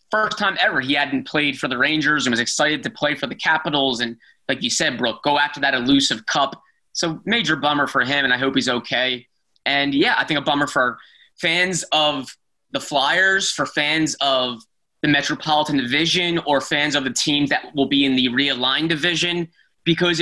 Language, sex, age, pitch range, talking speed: English, male, 20-39, 130-155 Hz, 200 wpm